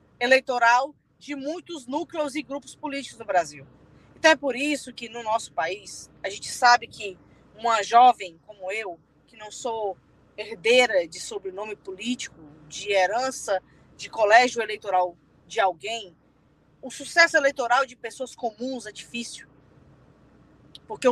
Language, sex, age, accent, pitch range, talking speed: Portuguese, female, 20-39, Brazilian, 230-295 Hz, 135 wpm